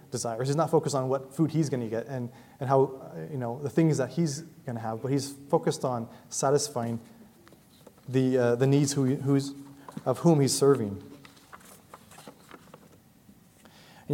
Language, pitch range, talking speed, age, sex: English, 130-160 Hz, 170 wpm, 30-49, male